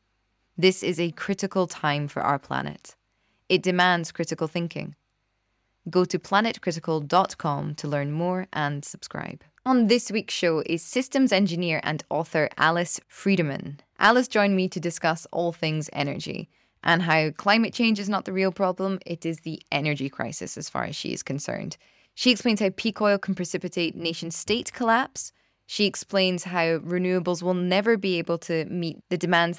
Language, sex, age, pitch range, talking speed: English, female, 20-39, 160-195 Hz, 160 wpm